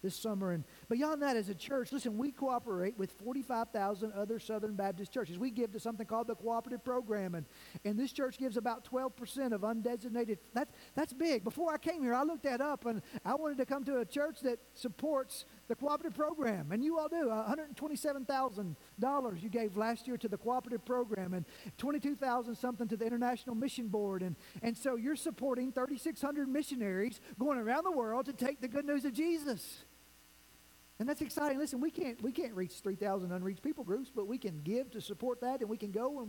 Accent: American